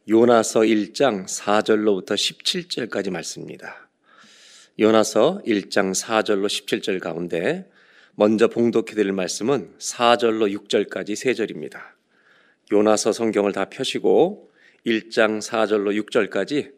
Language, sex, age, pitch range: Korean, male, 40-59, 105-125 Hz